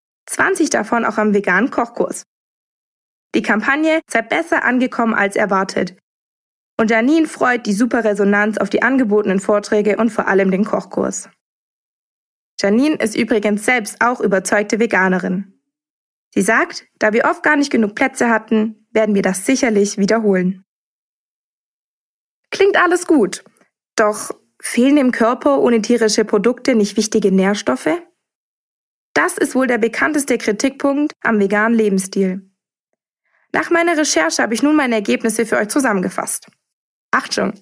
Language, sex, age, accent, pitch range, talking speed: German, female, 20-39, German, 210-265 Hz, 135 wpm